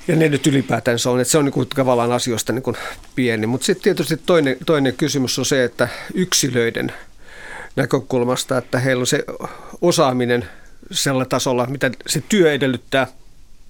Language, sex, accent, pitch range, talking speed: Finnish, male, native, 130-160 Hz, 160 wpm